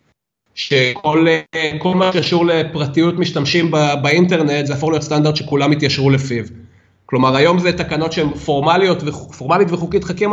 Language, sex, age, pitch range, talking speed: Hebrew, male, 30-49, 150-195 Hz, 130 wpm